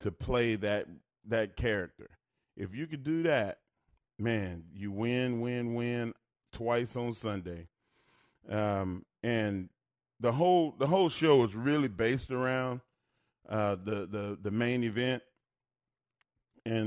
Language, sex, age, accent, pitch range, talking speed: English, male, 30-49, American, 110-135 Hz, 130 wpm